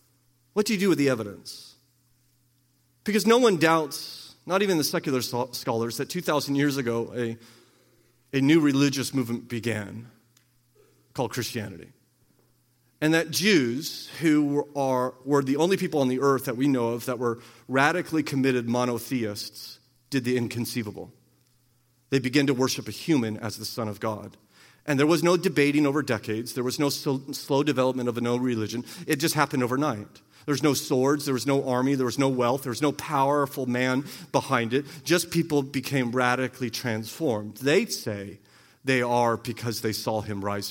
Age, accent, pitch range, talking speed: 40-59, American, 120-145 Hz, 170 wpm